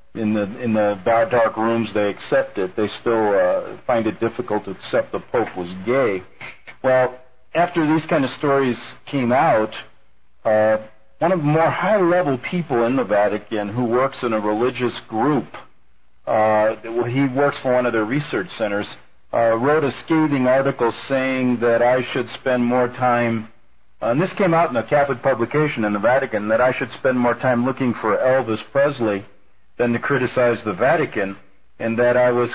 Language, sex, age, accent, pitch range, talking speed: English, male, 50-69, American, 110-140 Hz, 175 wpm